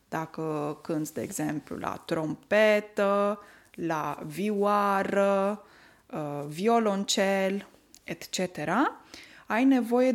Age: 20-39